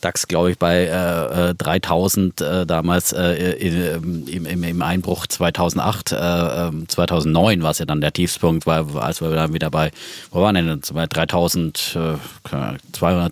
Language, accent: German, German